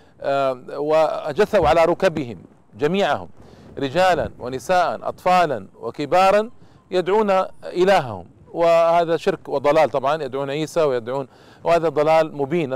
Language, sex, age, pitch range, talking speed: Arabic, male, 40-59, 150-190 Hz, 100 wpm